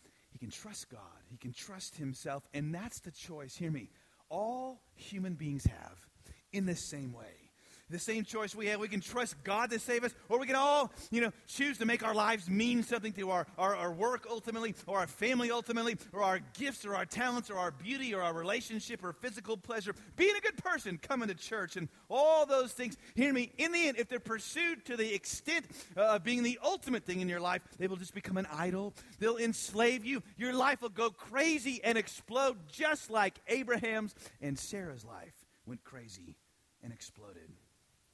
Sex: male